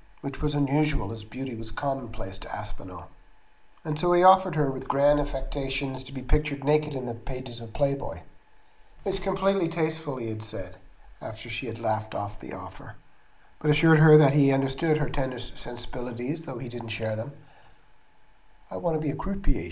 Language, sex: English, male